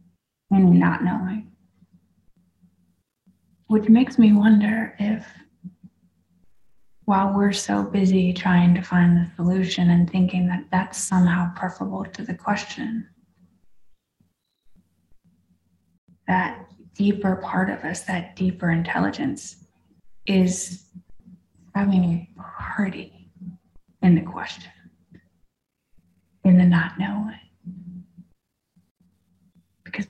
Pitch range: 170-195 Hz